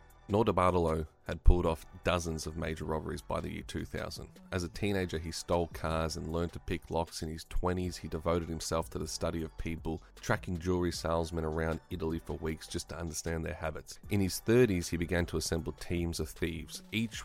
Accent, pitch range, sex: Australian, 80-100 Hz, male